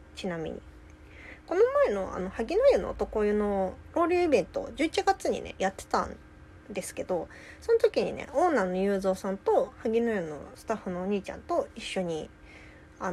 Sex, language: female, Japanese